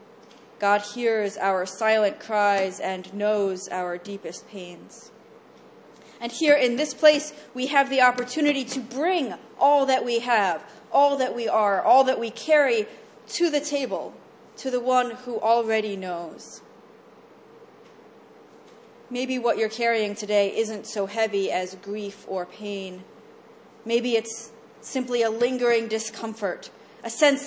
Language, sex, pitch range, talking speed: English, female, 205-250 Hz, 135 wpm